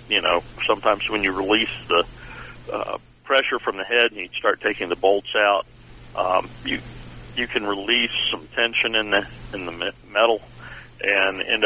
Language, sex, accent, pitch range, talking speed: English, male, American, 100-125 Hz, 170 wpm